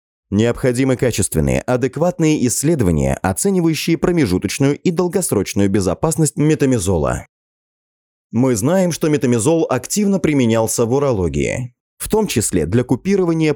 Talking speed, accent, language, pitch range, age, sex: 100 wpm, native, Russian, 105-155 Hz, 30-49, male